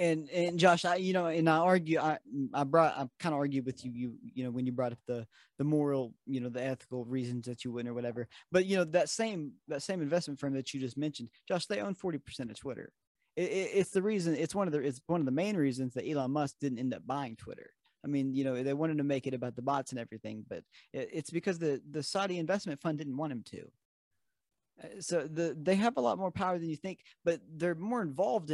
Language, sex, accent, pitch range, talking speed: English, male, American, 130-170 Hz, 255 wpm